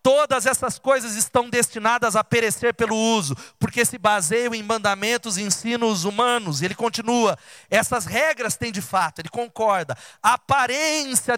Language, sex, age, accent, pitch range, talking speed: Portuguese, male, 30-49, Brazilian, 180-235 Hz, 150 wpm